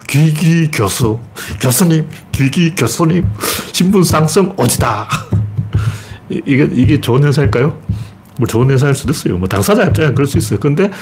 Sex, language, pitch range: male, Korean, 110-155 Hz